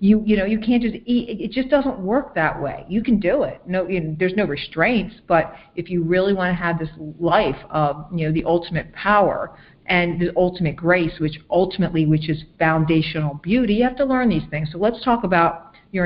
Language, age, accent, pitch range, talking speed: English, 50-69, American, 160-195 Hz, 220 wpm